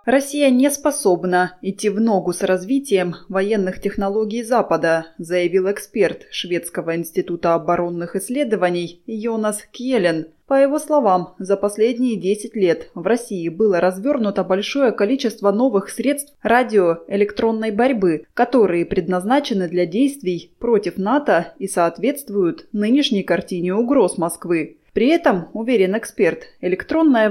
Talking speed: 115 wpm